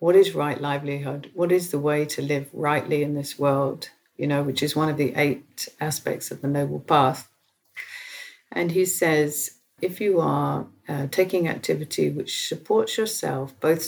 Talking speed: 175 wpm